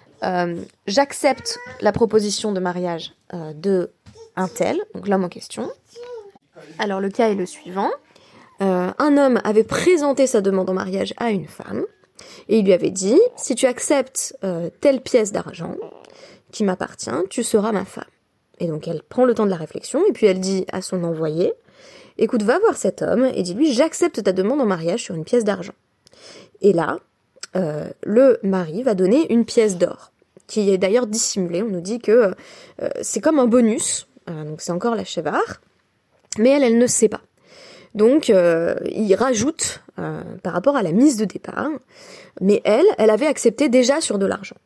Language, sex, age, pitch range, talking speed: French, female, 20-39, 190-285 Hz, 195 wpm